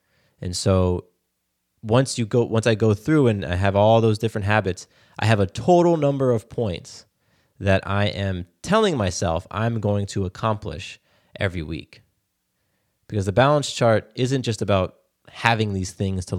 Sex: male